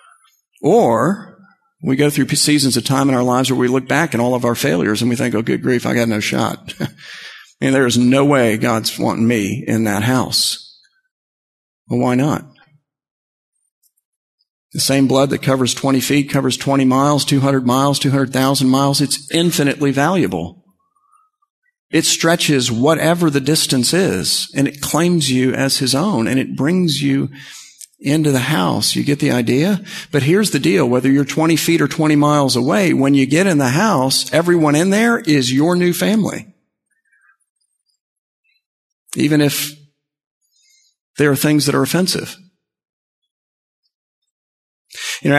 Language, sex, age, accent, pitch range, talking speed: English, male, 40-59, American, 130-155 Hz, 155 wpm